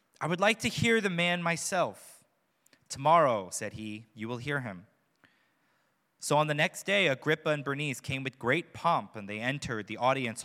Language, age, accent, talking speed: English, 20-39, American, 185 wpm